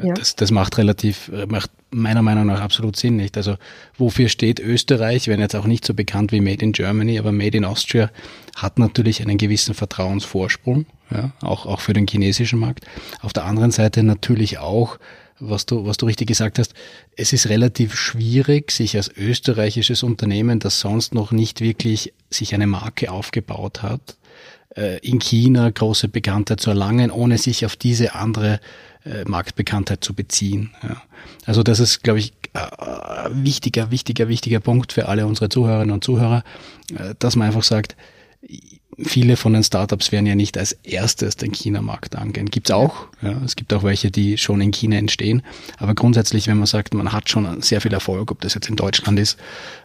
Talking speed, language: 185 wpm, German